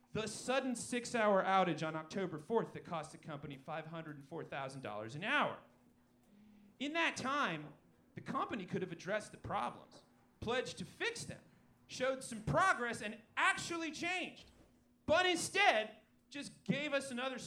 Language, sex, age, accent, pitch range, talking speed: English, male, 30-49, American, 195-270 Hz, 135 wpm